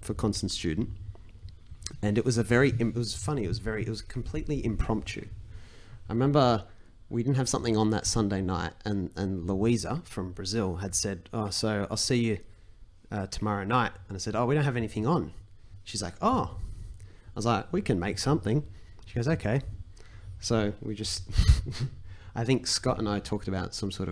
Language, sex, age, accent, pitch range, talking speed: English, male, 30-49, Australian, 95-115 Hz, 185 wpm